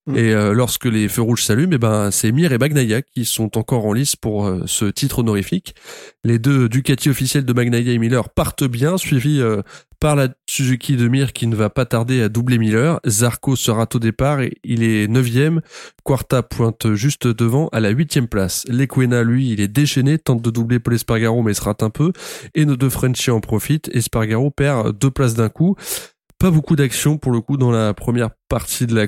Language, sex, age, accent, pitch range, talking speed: French, male, 20-39, French, 110-135 Hz, 215 wpm